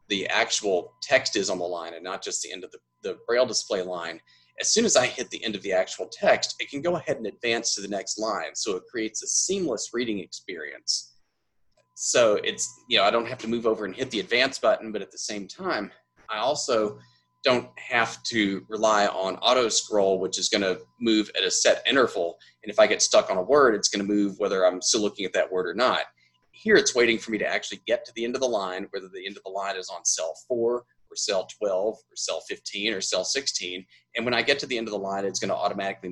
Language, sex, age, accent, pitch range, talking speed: English, male, 30-49, American, 95-130 Hz, 250 wpm